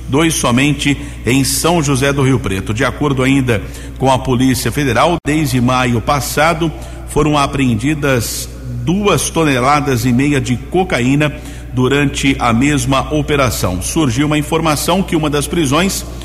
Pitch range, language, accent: 125-150 Hz, Portuguese, Brazilian